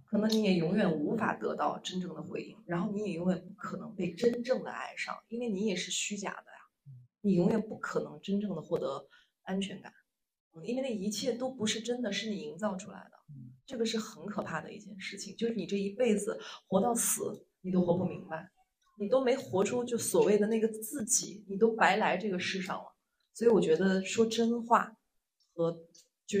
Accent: native